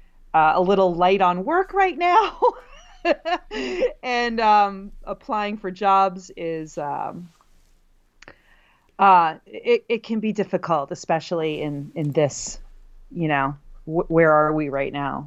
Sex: female